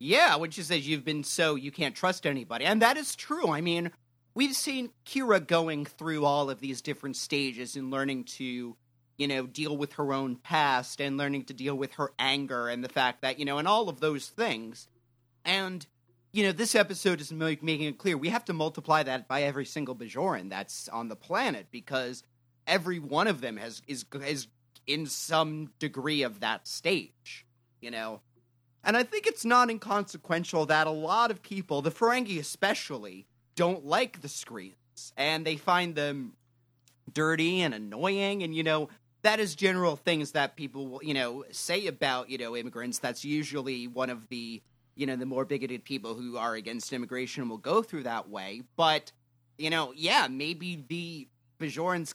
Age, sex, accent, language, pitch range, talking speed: 30-49, male, American, English, 125-165 Hz, 185 wpm